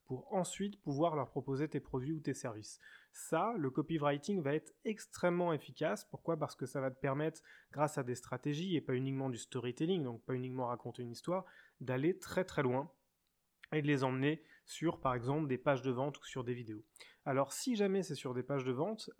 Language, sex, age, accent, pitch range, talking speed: French, male, 20-39, French, 130-170 Hz, 210 wpm